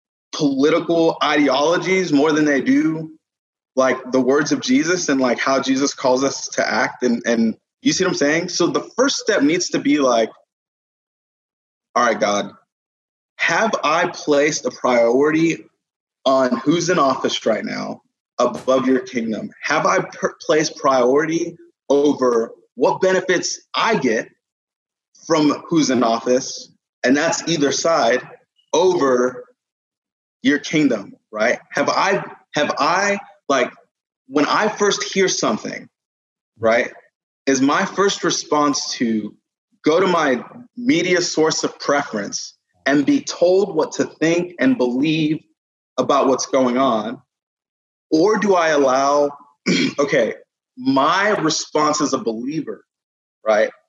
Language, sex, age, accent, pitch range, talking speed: English, male, 20-39, American, 130-190 Hz, 130 wpm